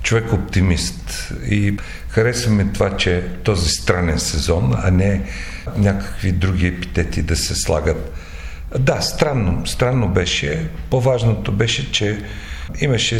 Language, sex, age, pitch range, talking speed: Bulgarian, male, 50-69, 85-105 Hz, 110 wpm